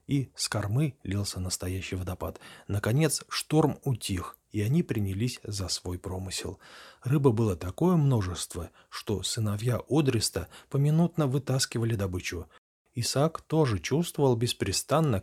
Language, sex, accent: Russian, male, native